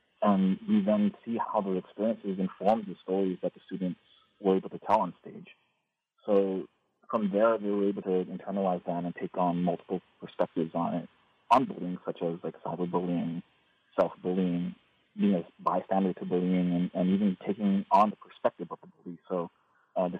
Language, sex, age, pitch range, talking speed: English, male, 30-49, 90-100 Hz, 180 wpm